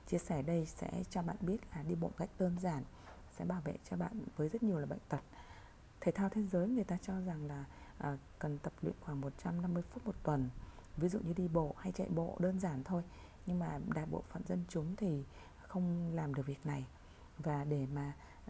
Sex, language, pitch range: female, Vietnamese, 145-190 Hz